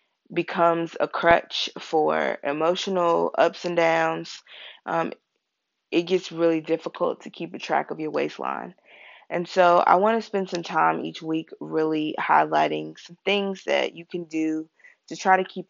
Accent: American